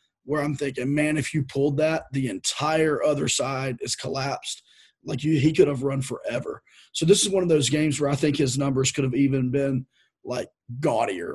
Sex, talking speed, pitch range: male, 200 wpm, 135-155 Hz